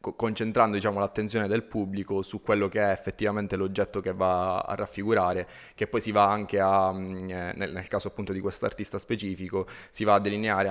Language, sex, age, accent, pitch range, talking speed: Italian, male, 20-39, native, 95-105 Hz, 175 wpm